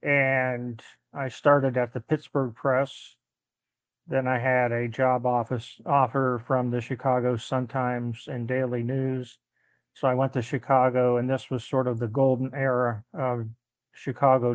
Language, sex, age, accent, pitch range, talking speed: English, male, 40-59, American, 120-135 Hz, 155 wpm